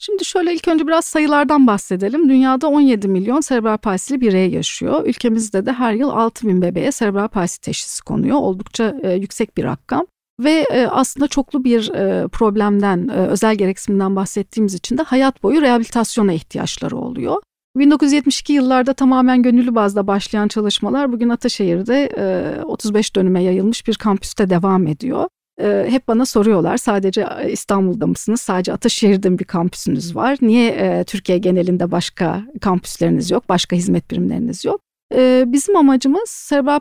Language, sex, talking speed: Turkish, female, 145 wpm